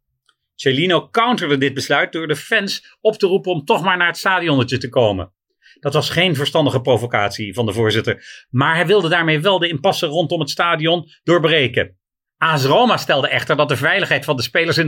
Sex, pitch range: male, 140-180 Hz